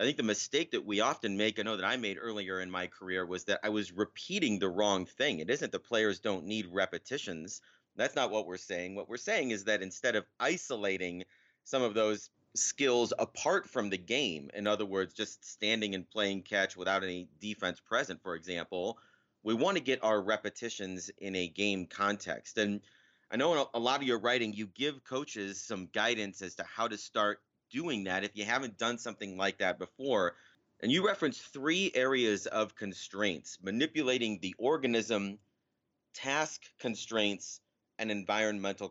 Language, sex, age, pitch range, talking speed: English, male, 30-49, 100-115 Hz, 185 wpm